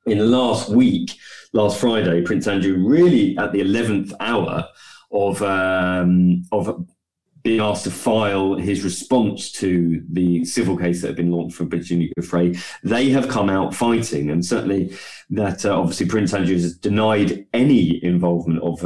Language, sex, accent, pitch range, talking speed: English, male, British, 90-115 Hz, 160 wpm